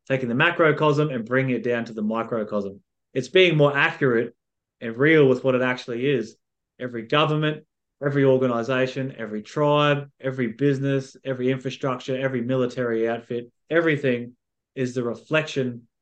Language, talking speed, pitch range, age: English, 140 wpm, 115-140 Hz, 20-39